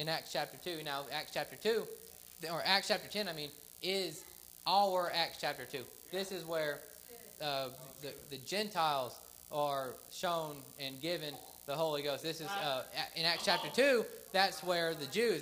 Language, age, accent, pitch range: English, 20-39, American, 160-195 Hz